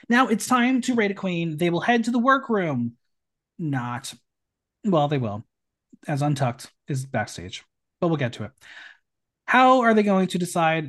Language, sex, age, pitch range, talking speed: English, male, 30-49, 135-200 Hz, 175 wpm